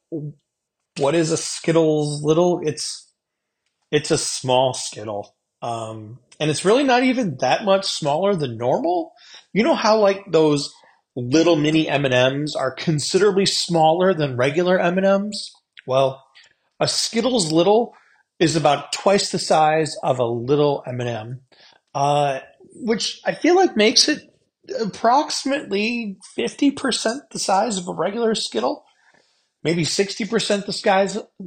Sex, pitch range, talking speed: male, 140-195 Hz, 125 wpm